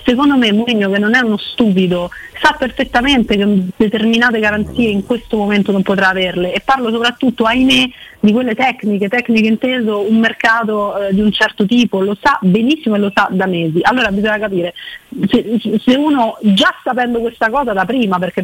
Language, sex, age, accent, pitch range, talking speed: Italian, female, 30-49, native, 185-230 Hz, 180 wpm